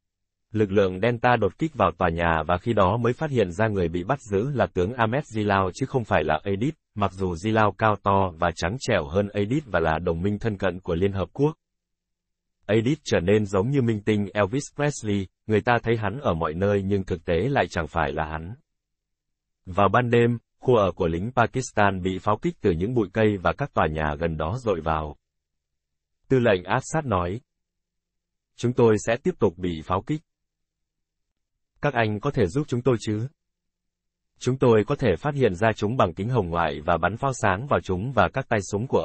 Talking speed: 210 wpm